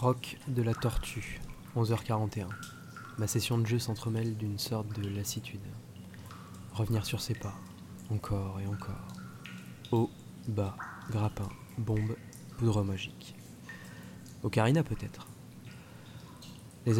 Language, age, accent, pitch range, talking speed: French, 20-39, French, 105-120 Hz, 105 wpm